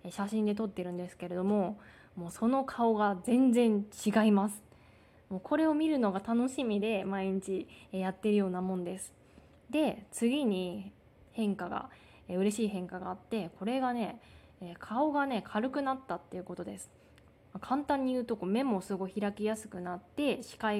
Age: 20-39